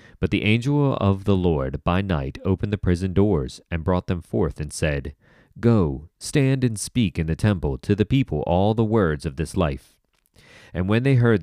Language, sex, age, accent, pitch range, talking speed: English, male, 30-49, American, 80-110 Hz, 200 wpm